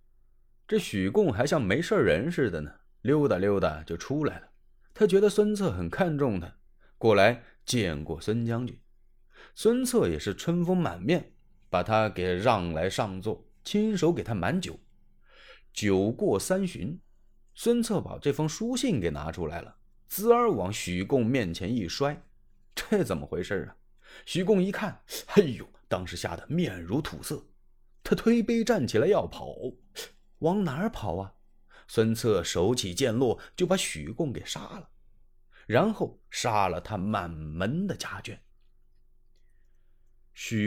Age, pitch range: 30-49, 105-170 Hz